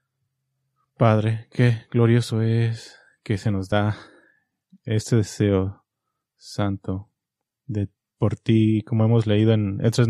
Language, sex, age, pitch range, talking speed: English, male, 20-39, 105-120 Hz, 115 wpm